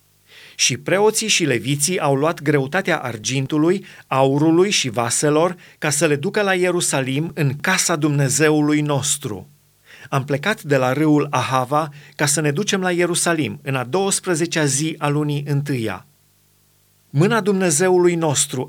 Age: 30-49